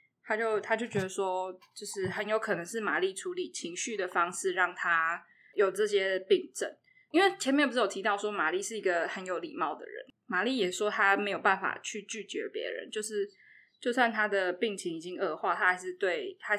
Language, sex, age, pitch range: Chinese, female, 20-39, 185-265 Hz